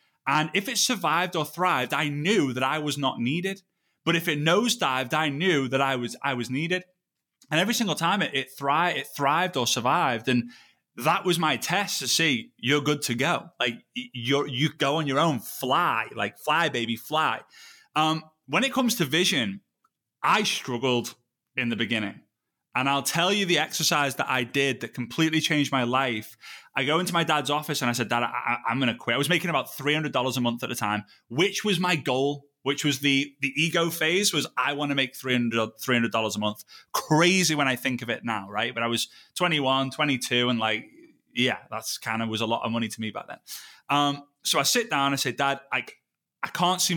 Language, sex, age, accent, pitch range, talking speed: English, male, 20-39, British, 120-160 Hz, 215 wpm